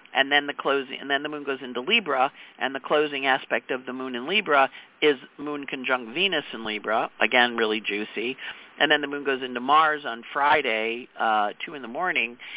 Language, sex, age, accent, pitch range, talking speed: English, male, 50-69, American, 120-150 Hz, 205 wpm